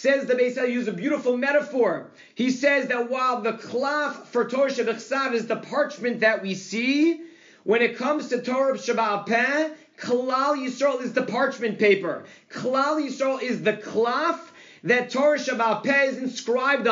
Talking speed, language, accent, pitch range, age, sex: 155 wpm, English, American, 230-280 Hz, 40-59, male